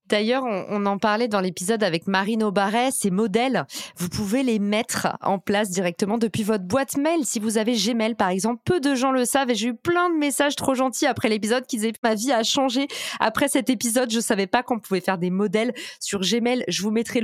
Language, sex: French, female